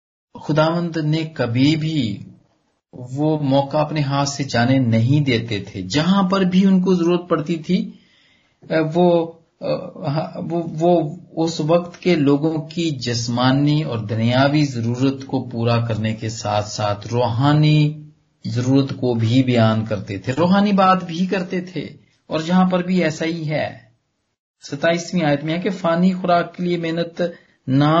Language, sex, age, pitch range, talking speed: Punjabi, male, 40-59, 115-160 Hz, 145 wpm